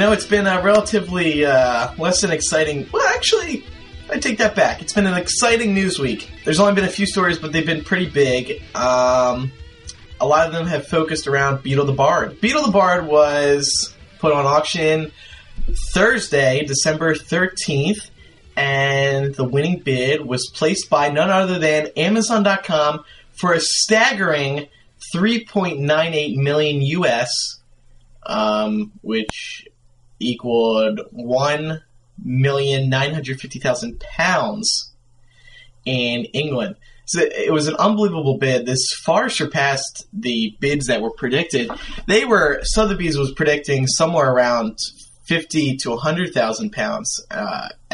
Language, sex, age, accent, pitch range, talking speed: English, male, 20-39, American, 125-185 Hz, 130 wpm